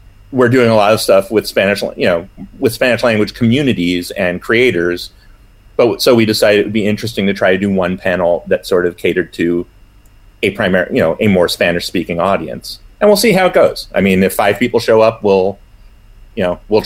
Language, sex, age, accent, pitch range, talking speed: English, male, 30-49, American, 95-115 Hz, 215 wpm